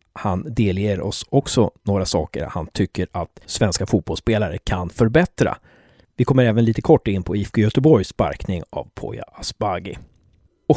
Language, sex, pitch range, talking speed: Swedish, male, 100-150 Hz, 150 wpm